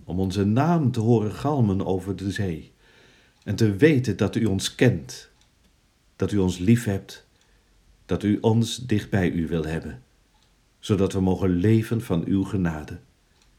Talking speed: 160 wpm